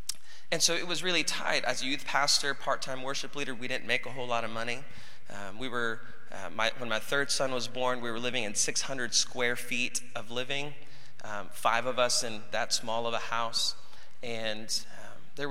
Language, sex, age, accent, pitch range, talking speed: English, male, 30-49, American, 110-130 Hz, 210 wpm